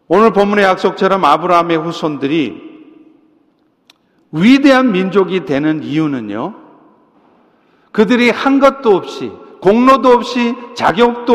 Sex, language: male, Korean